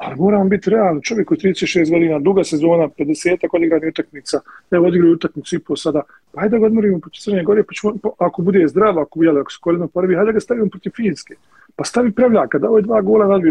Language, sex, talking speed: English, male, 210 wpm